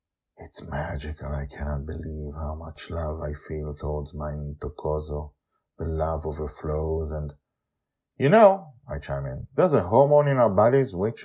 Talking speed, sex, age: 155 wpm, male, 50-69